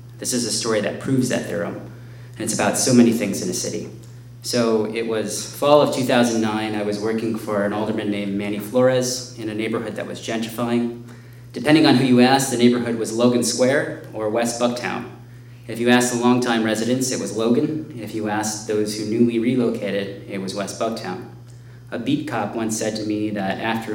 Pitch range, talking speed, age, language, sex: 110-120 Hz, 200 wpm, 30-49, English, male